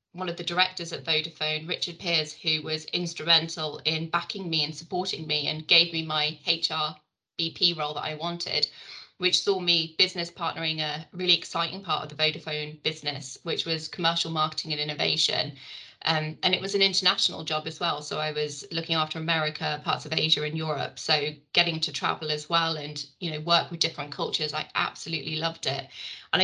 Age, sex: 20-39, female